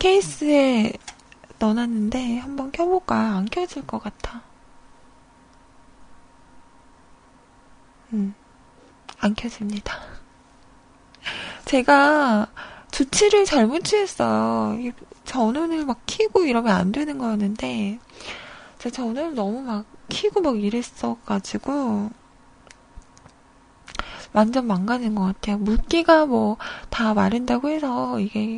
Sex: female